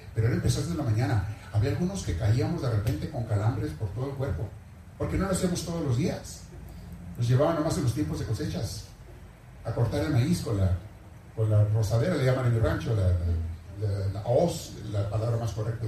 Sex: male